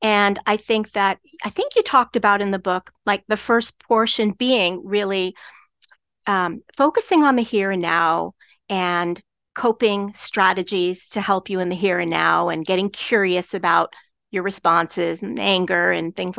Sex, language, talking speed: female, English, 170 wpm